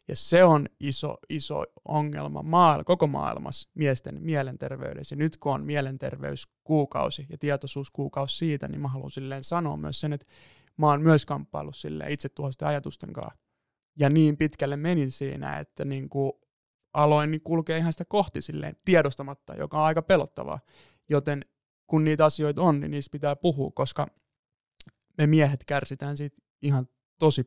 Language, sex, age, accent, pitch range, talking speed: Finnish, male, 20-39, native, 135-155 Hz, 150 wpm